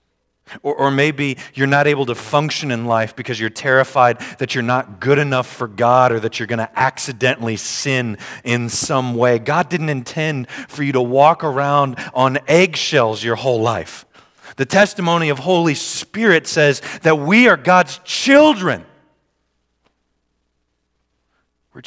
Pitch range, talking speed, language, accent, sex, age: 80-135 Hz, 150 wpm, English, American, male, 40-59